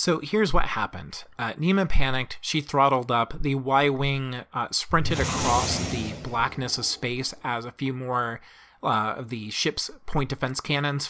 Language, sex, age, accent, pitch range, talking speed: English, male, 30-49, American, 120-150 Hz, 150 wpm